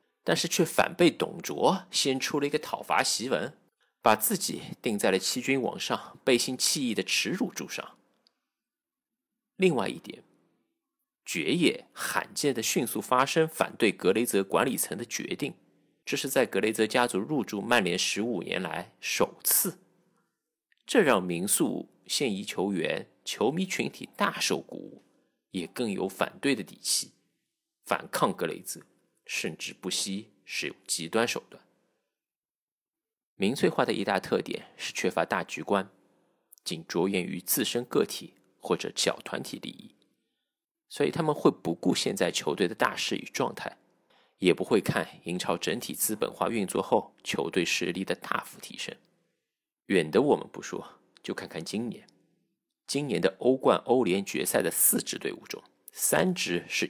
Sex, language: male, Chinese